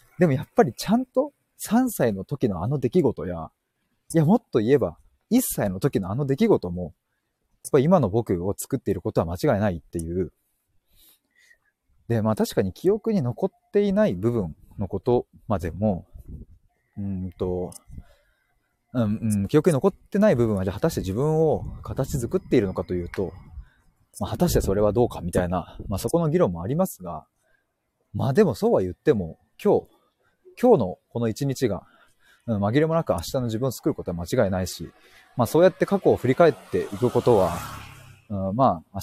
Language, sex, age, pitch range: Japanese, male, 30-49, 95-145 Hz